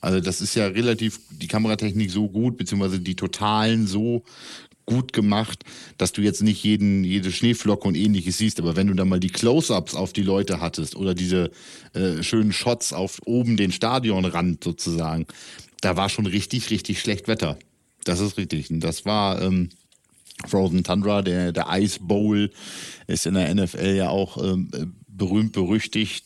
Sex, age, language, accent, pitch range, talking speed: male, 50-69, German, German, 90-110 Hz, 170 wpm